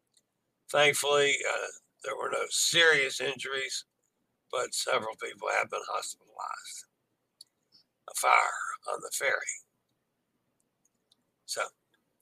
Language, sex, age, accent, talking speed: English, male, 60-79, American, 95 wpm